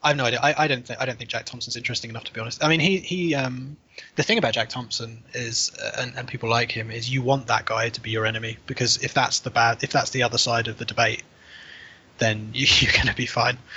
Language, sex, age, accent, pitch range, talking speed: English, male, 20-39, British, 115-125 Hz, 280 wpm